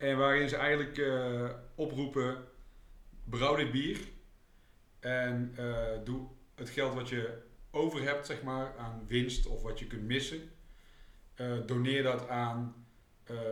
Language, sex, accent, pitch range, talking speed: Dutch, male, Dutch, 115-130 Hz, 140 wpm